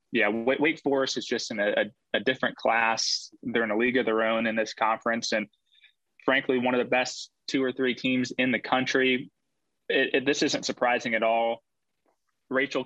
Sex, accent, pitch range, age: male, American, 110-130 Hz, 20-39